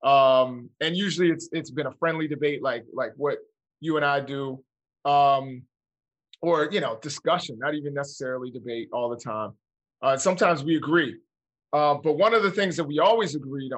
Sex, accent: male, American